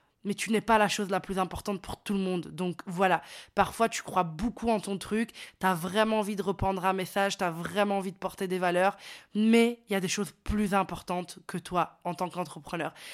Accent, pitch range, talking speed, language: French, 185-215 Hz, 235 wpm, French